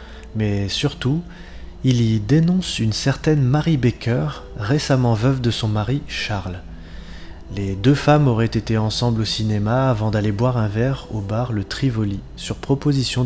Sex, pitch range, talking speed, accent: male, 105-135 Hz, 155 wpm, French